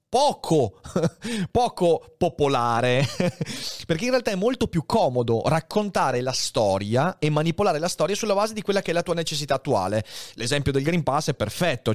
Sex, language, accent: male, Italian, native